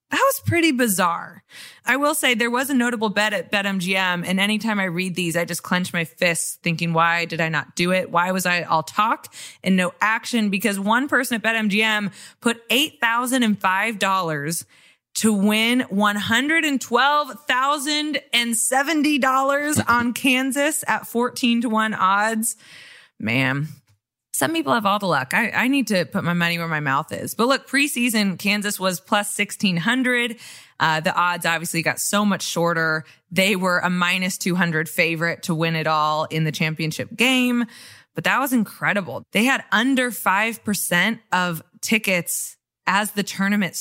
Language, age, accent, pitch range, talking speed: English, 20-39, American, 175-240 Hz, 160 wpm